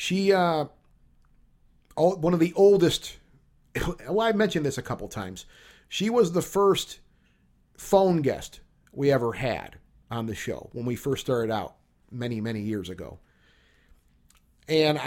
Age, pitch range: 40-59, 120-160 Hz